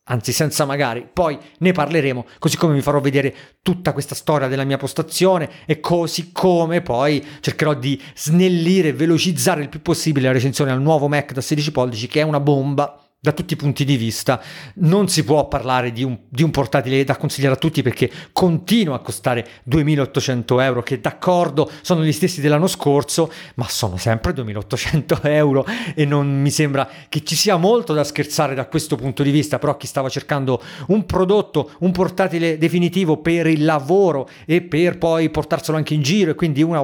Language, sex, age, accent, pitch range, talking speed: Italian, male, 40-59, native, 135-175 Hz, 185 wpm